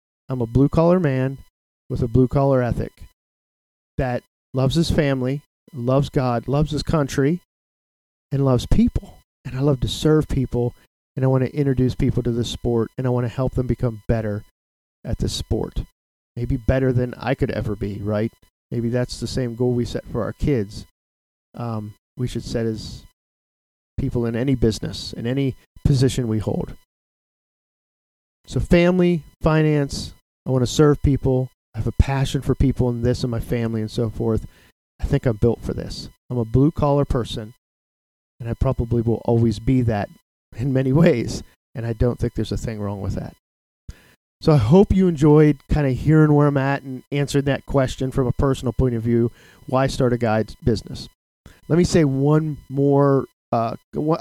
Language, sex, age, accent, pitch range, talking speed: English, male, 40-59, American, 115-140 Hz, 180 wpm